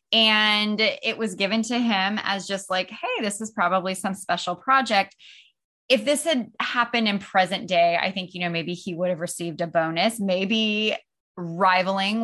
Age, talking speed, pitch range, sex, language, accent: 20-39, 175 wpm, 175-230 Hz, female, English, American